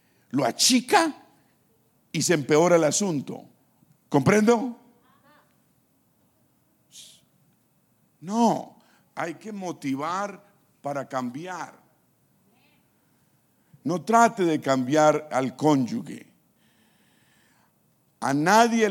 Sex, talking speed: male, 70 wpm